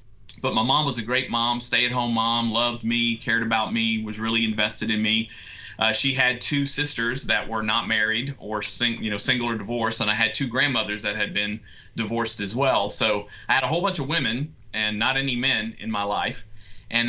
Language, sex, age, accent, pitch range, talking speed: English, male, 30-49, American, 105-120 Hz, 220 wpm